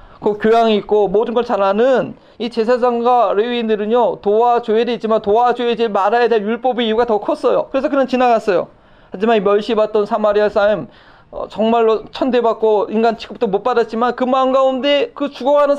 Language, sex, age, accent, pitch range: Korean, male, 40-59, native, 210-270 Hz